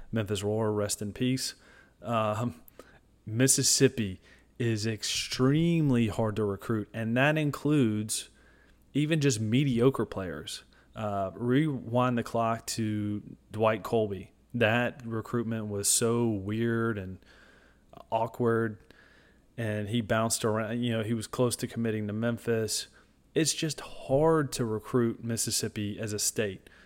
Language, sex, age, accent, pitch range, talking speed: English, male, 30-49, American, 105-125 Hz, 125 wpm